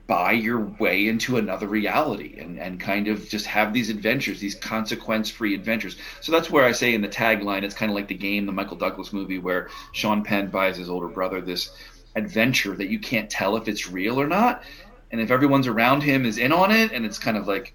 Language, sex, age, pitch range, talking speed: English, male, 40-59, 100-130 Hz, 230 wpm